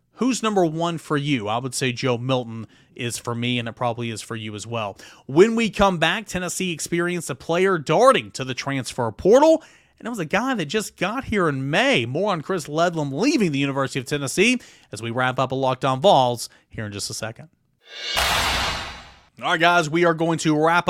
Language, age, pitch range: English, 30-49, 125-170 Hz